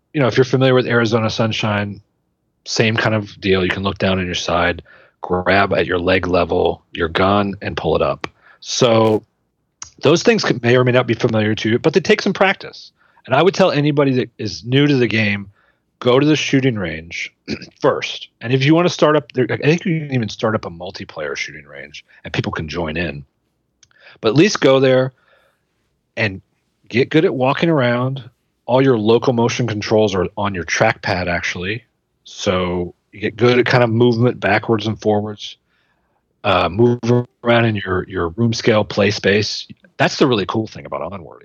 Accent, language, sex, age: American, English, male, 40-59